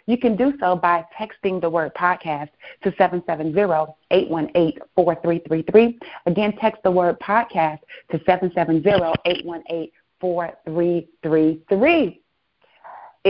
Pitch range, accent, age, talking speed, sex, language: 170-220 Hz, American, 40-59, 80 wpm, female, English